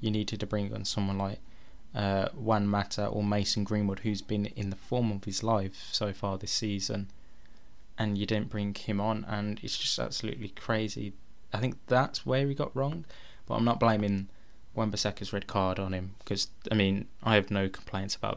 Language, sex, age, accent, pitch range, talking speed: English, male, 20-39, British, 100-115 Hz, 195 wpm